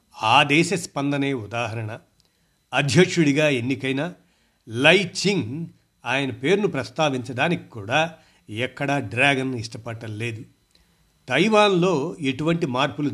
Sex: male